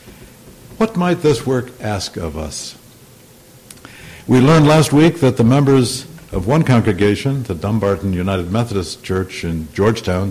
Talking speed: 140 wpm